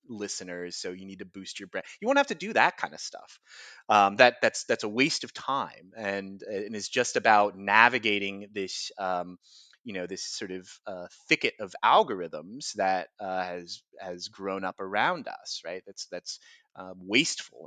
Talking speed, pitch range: 190 wpm, 95-130 Hz